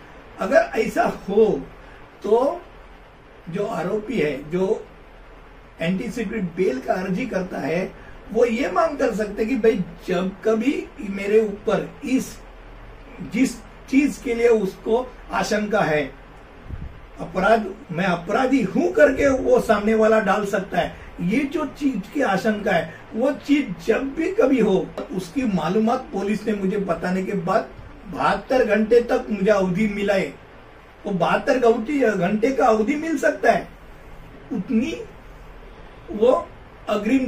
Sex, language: male, Hindi